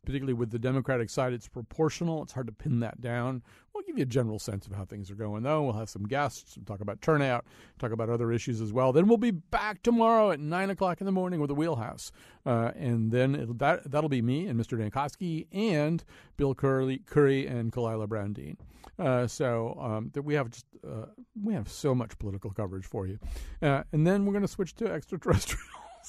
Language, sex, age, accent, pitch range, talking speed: English, male, 50-69, American, 115-165 Hz, 220 wpm